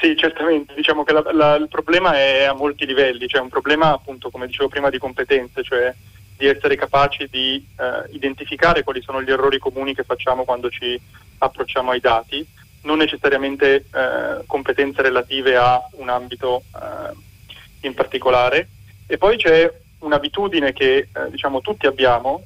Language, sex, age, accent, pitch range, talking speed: Italian, male, 20-39, native, 125-150 Hz, 165 wpm